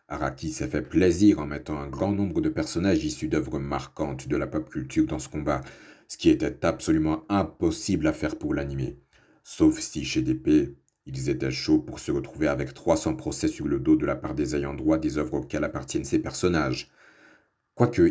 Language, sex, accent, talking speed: French, male, French, 195 wpm